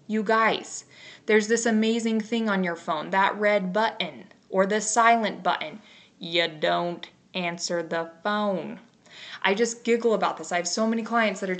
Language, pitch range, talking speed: English, 185-235 Hz, 170 wpm